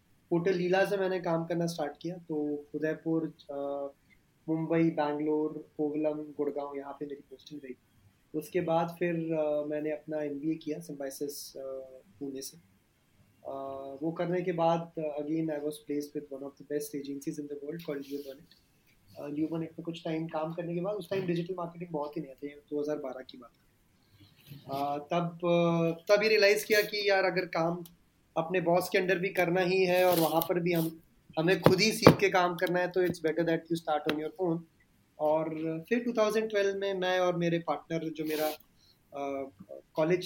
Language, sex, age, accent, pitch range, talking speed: Hindi, male, 20-39, native, 145-170 Hz, 155 wpm